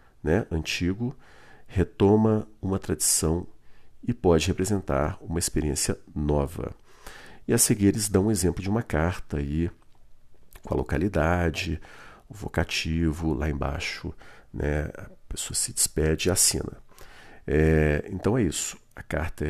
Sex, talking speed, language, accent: male, 130 wpm, Portuguese, Brazilian